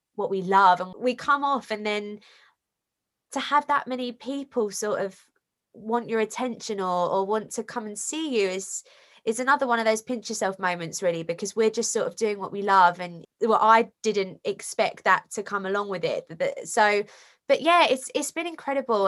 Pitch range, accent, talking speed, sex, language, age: 205-260 Hz, British, 200 wpm, female, English, 20-39